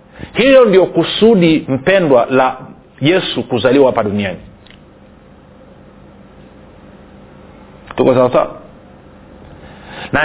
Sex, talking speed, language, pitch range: male, 60 wpm, Swahili, 130-170 Hz